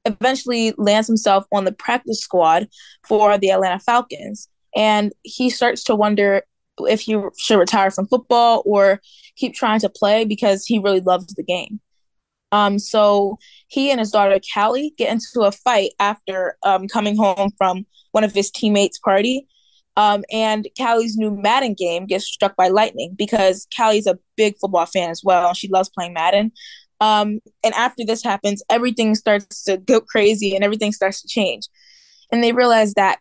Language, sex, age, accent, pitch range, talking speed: English, female, 20-39, American, 195-230 Hz, 170 wpm